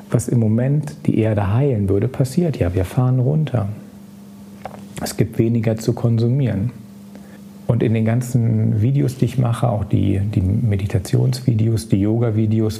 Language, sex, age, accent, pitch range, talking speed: German, male, 40-59, German, 105-125 Hz, 145 wpm